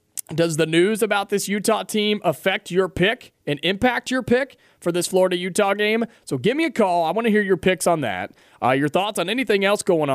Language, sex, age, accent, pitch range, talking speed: English, male, 30-49, American, 140-190 Hz, 225 wpm